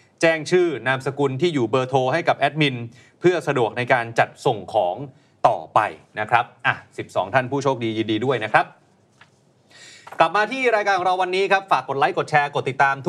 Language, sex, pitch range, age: Thai, male, 130-170 Hz, 30-49